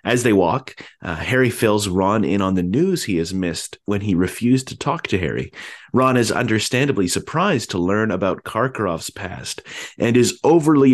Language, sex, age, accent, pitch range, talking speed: English, male, 30-49, American, 95-130 Hz, 180 wpm